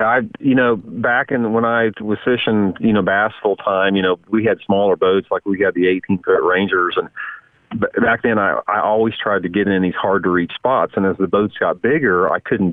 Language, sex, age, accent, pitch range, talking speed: English, male, 40-59, American, 95-110 Hz, 235 wpm